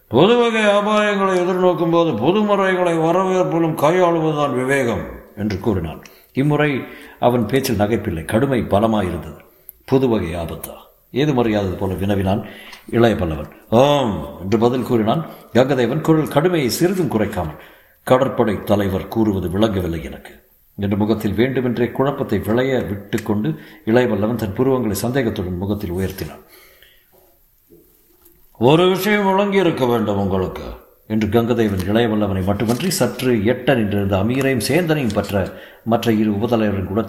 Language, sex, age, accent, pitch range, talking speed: Tamil, male, 60-79, native, 100-140 Hz, 115 wpm